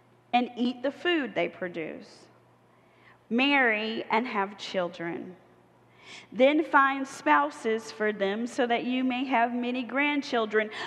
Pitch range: 195-255 Hz